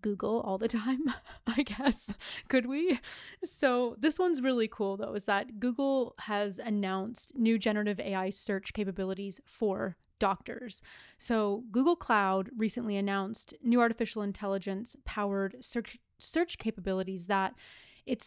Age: 20-39